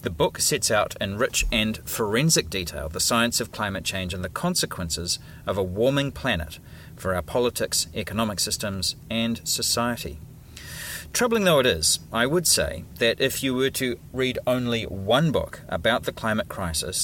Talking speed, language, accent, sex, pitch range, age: 170 wpm, English, Australian, male, 90-120 Hz, 40-59